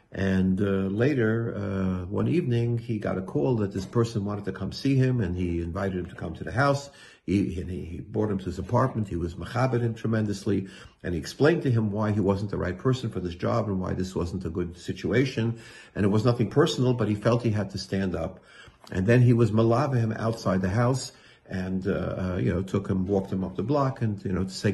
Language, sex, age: English, male, 50-69